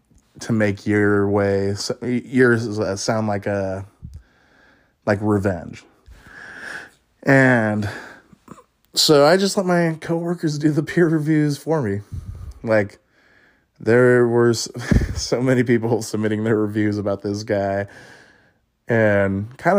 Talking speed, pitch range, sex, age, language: 110 wpm, 100-135 Hz, male, 20-39, English